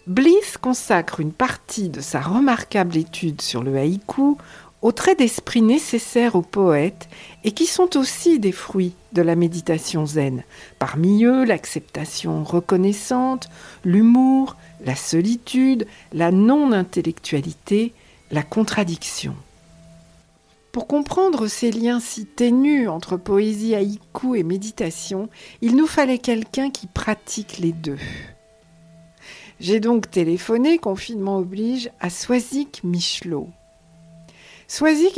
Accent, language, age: French, French, 60-79